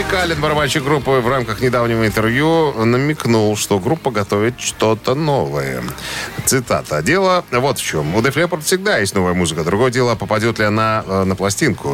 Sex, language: male, Russian